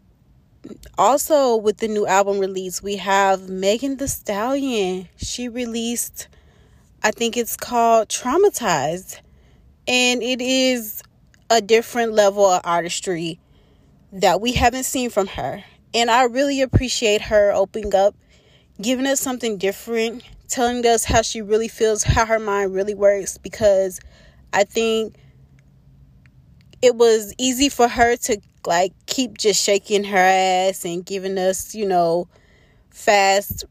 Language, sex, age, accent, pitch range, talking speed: English, female, 20-39, American, 190-230 Hz, 135 wpm